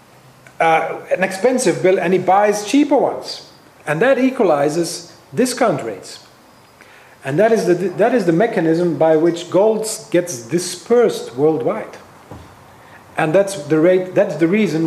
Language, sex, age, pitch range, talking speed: English, male, 40-59, 160-200 Hz, 140 wpm